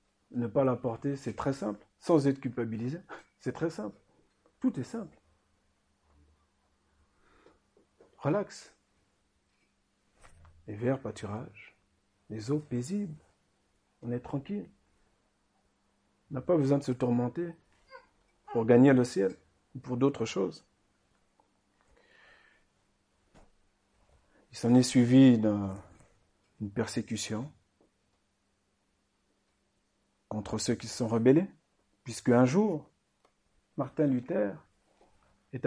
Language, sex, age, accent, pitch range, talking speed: French, male, 50-69, French, 105-155 Hz, 100 wpm